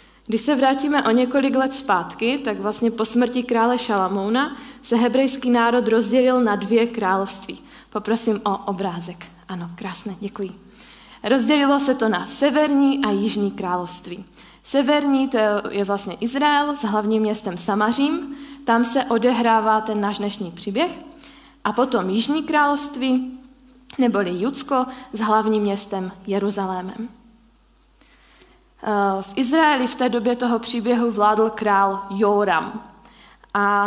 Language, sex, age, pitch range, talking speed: Czech, female, 20-39, 205-255 Hz, 125 wpm